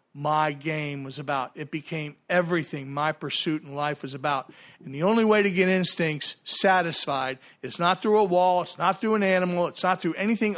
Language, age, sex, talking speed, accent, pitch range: English, 50-69, male, 200 wpm, American, 155-195 Hz